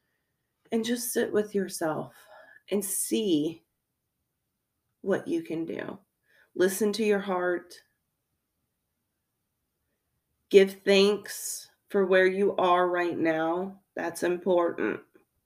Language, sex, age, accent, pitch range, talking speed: English, female, 30-49, American, 160-190 Hz, 95 wpm